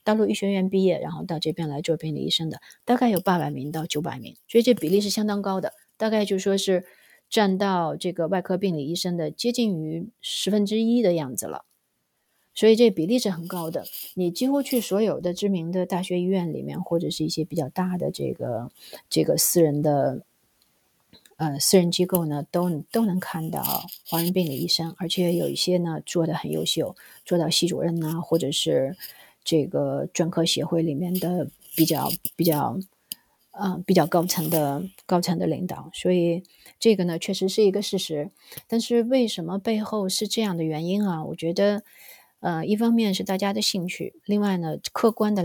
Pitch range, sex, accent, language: 165-205 Hz, female, native, Chinese